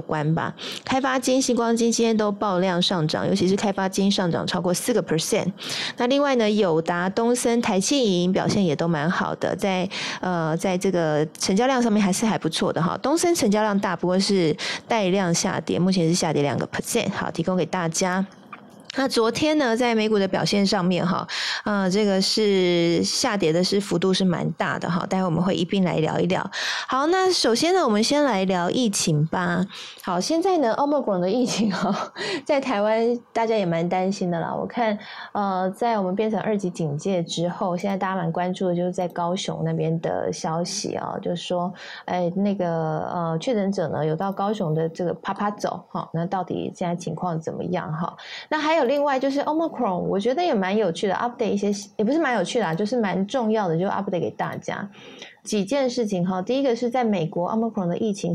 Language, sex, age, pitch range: Chinese, female, 20-39, 175-230 Hz